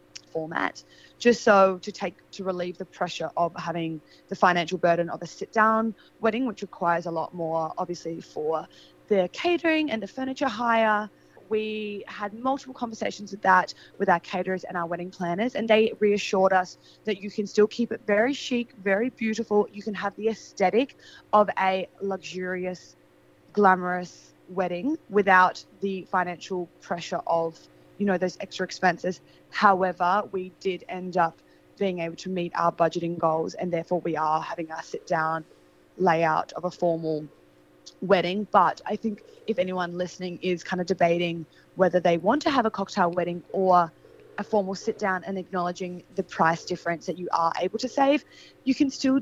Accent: Australian